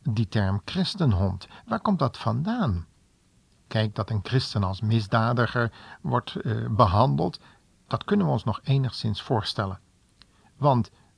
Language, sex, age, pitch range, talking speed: Dutch, male, 50-69, 100-125 Hz, 130 wpm